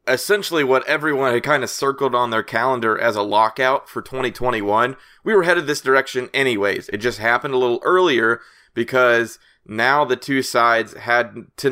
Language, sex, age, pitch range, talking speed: English, male, 30-49, 115-140 Hz, 175 wpm